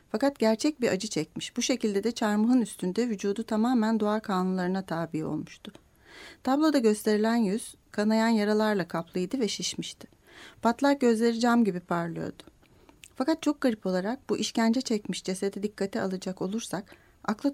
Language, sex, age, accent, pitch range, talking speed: Turkish, female, 40-59, native, 195-250 Hz, 140 wpm